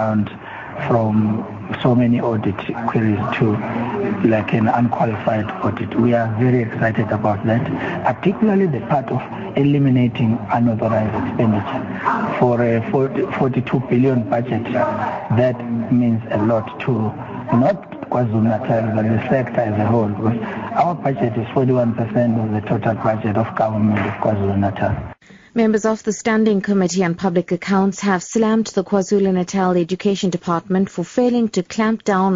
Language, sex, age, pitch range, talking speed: English, male, 60-79, 120-195 Hz, 135 wpm